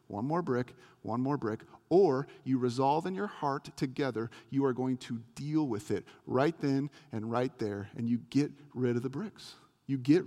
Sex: male